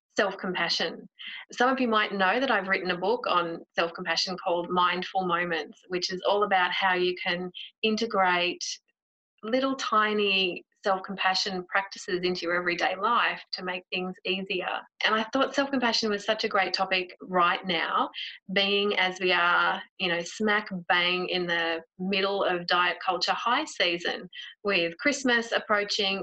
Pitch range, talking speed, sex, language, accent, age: 180-220 Hz, 160 wpm, female, English, Australian, 30-49